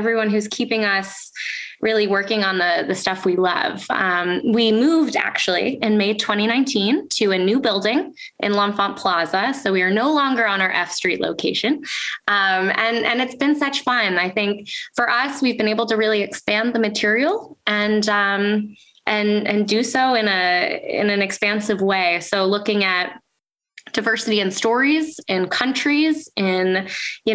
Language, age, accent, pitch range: English, 10-29, American, 200-250 Hz